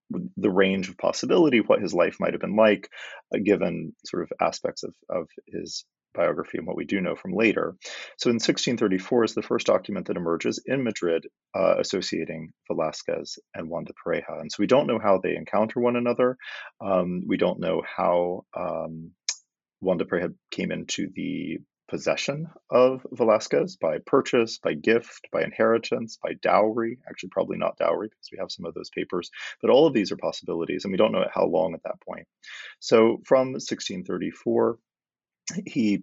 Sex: male